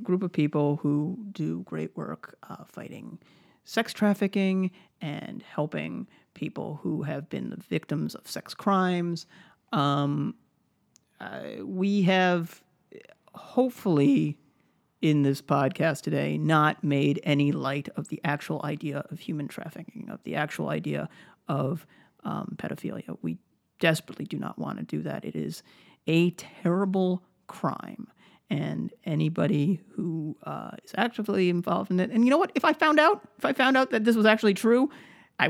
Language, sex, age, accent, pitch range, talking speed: English, male, 40-59, American, 150-205 Hz, 150 wpm